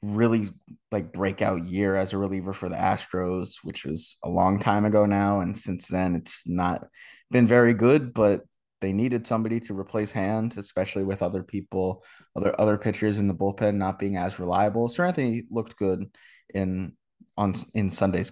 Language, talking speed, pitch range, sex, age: English, 175 wpm, 95-110 Hz, male, 20-39